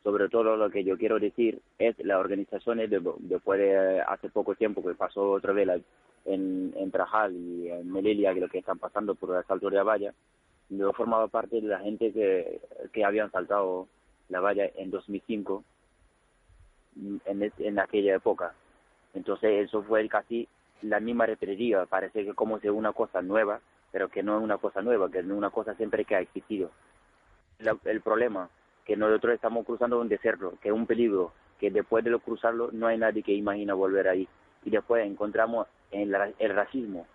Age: 30-49